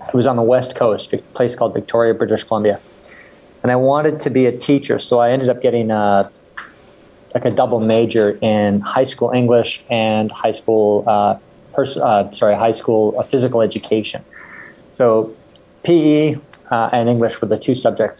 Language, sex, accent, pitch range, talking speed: English, male, American, 115-140 Hz, 180 wpm